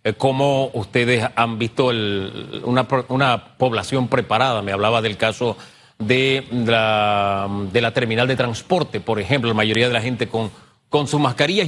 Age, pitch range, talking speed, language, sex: 40-59, 120-165 Hz, 150 wpm, Spanish, male